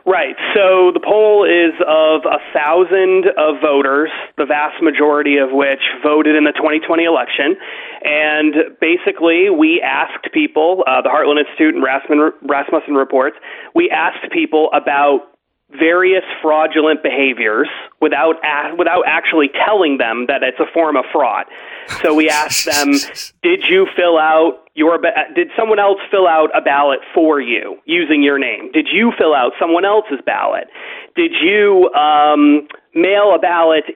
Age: 30-49